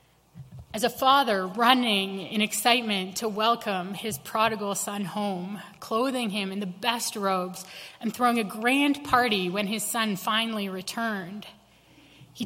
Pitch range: 195-240 Hz